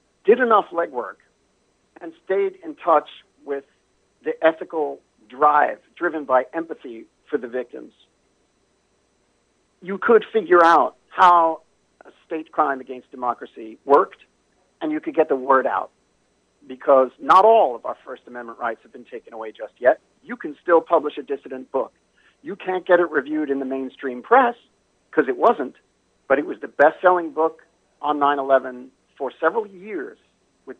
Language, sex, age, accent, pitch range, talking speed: English, male, 50-69, American, 135-215 Hz, 155 wpm